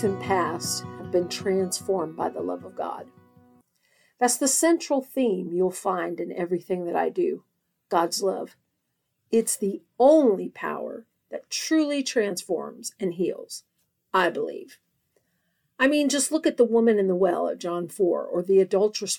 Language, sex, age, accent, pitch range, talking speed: English, female, 50-69, American, 185-245 Hz, 155 wpm